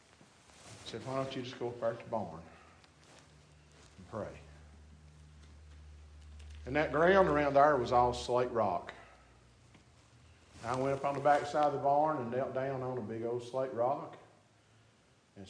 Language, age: English, 50-69